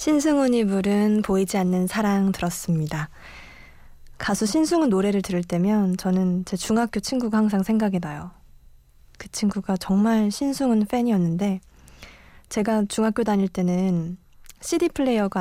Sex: female